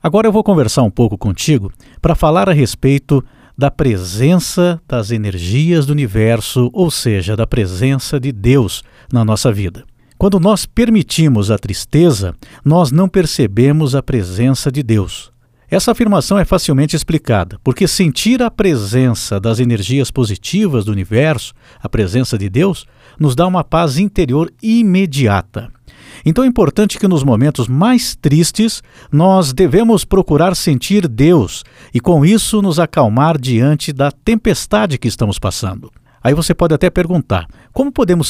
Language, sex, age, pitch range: Portuguese, male, 50-69, 120-180 Hz